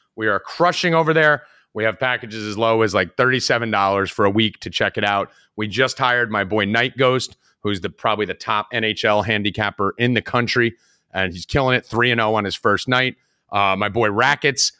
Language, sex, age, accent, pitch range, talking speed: English, male, 30-49, American, 110-150 Hz, 205 wpm